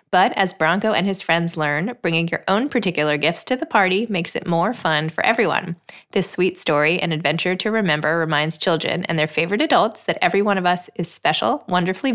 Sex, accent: female, American